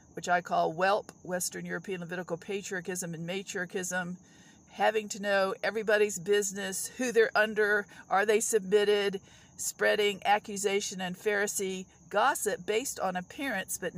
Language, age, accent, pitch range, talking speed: English, 50-69, American, 175-210 Hz, 130 wpm